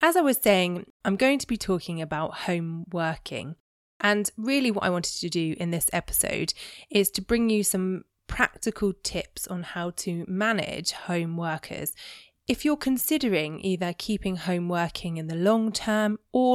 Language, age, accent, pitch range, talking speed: English, 20-39, British, 170-220 Hz, 170 wpm